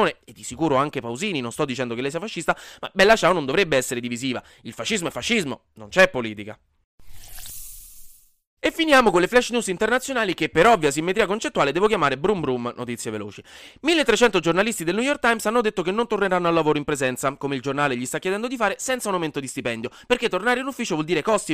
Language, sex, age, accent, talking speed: Italian, male, 20-39, native, 220 wpm